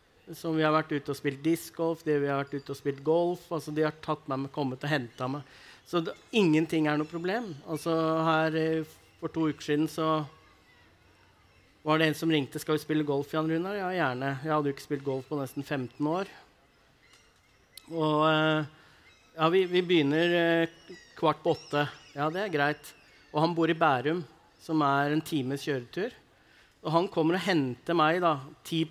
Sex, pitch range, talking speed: male, 140-160 Hz, 190 wpm